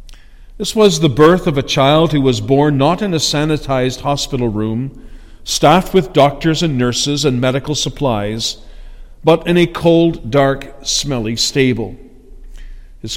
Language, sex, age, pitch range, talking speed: English, male, 50-69, 115-150 Hz, 145 wpm